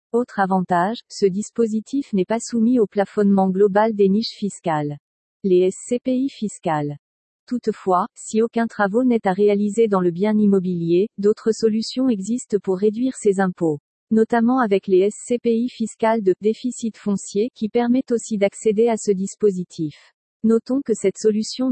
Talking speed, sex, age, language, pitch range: 145 wpm, female, 40-59, French, 195-230 Hz